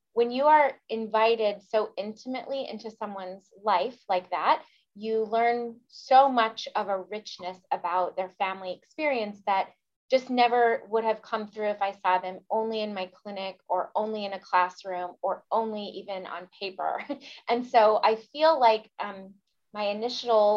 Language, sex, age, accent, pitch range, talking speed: English, female, 20-39, American, 190-230 Hz, 160 wpm